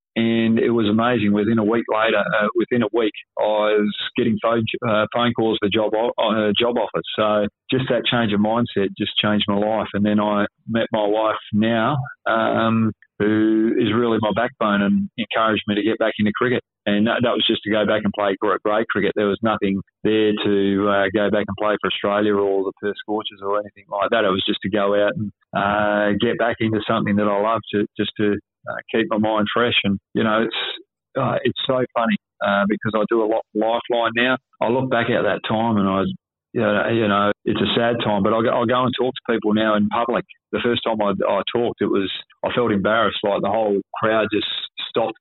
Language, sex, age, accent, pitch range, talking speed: English, male, 30-49, Australian, 105-115 Hz, 230 wpm